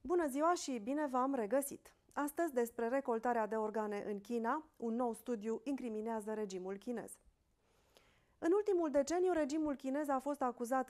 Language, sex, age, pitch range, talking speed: Romanian, female, 30-49, 220-285 Hz, 150 wpm